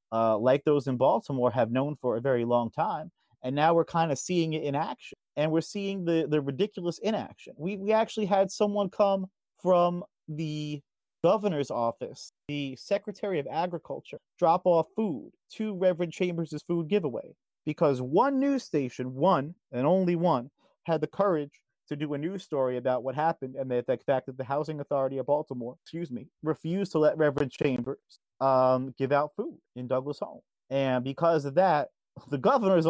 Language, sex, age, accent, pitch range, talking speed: English, male, 30-49, American, 130-180 Hz, 180 wpm